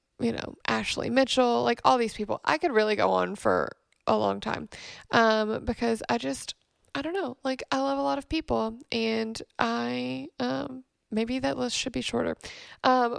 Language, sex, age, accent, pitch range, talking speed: English, female, 20-39, American, 225-280 Hz, 185 wpm